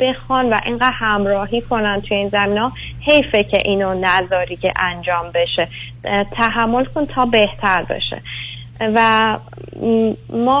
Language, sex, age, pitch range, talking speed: Persian, female, 20-39, 180-225 Hz, 130 wpm